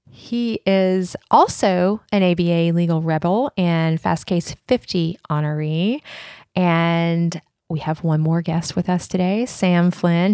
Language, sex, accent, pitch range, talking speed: English, female, American, 170-200 Hz, 135 wpm